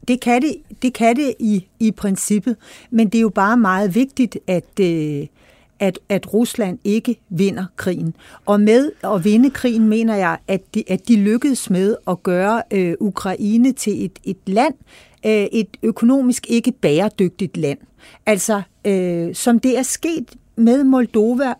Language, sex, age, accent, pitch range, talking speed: Danish, female, 60-79, native, 185-240 Hz, 140 wpm